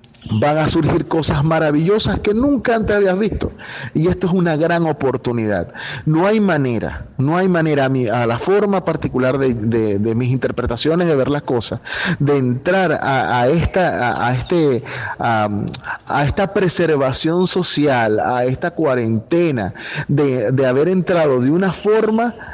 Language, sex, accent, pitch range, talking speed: Spanish, male, Venezuelan, 120-170 Hz, 160 wpm